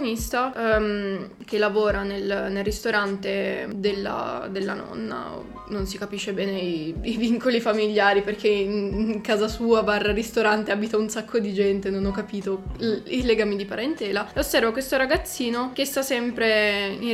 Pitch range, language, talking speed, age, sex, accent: 200-230 Hz, Italian, 155 wpm, 20-39, female, native